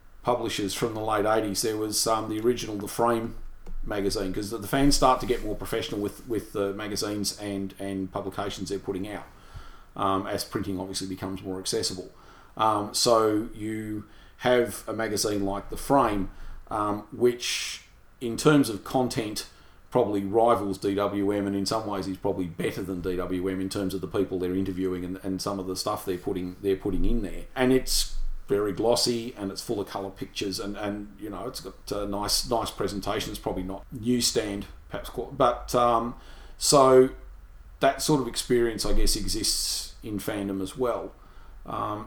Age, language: 30-49, English